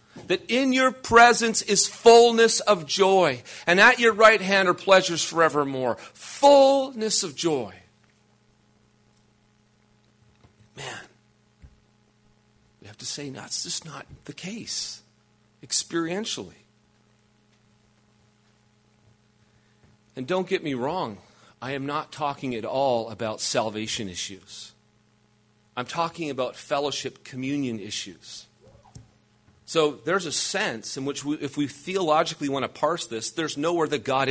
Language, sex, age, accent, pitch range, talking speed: English, male, 40-59, American, 105-160 Hz, 115 wpm